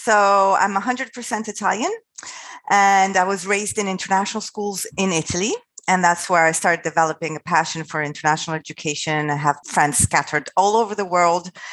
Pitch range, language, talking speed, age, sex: 155-200 Hz, English, 170 wpm, 30-49, female